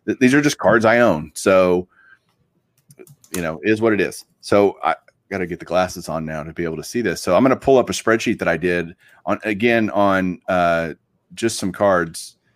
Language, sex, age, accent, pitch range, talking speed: English, male, 30-49, American, 90-110 Hz, 220 wpm